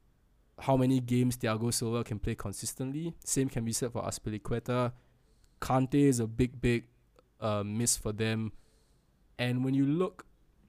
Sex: male